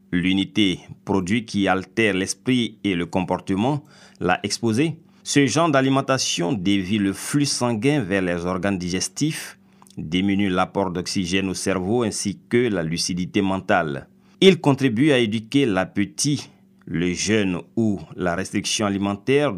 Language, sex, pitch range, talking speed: French, male, 95-130 Hz, 130 wpm